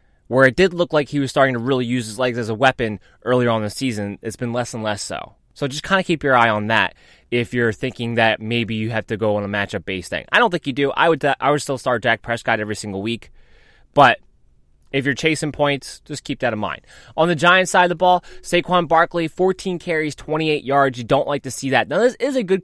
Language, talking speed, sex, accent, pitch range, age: English, 260 wpm, male, American, 120-170 Hz, 20-39